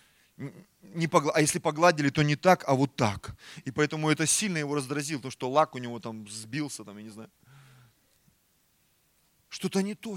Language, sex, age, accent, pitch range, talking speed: Russian, male, 30-49, native, 160-235 Hz, 175 wpm